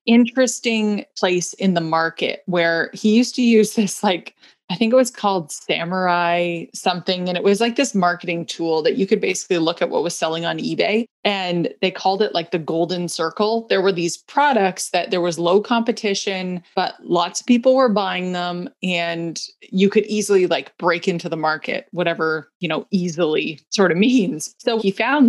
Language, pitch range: English, 175-220 Hz